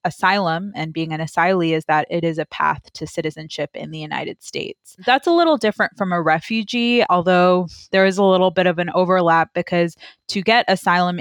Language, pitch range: English, 160-185 Hz